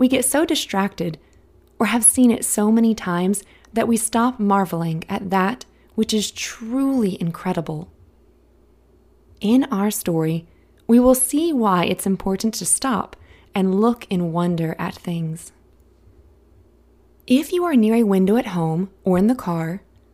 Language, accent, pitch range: English, American, 170-230 Hz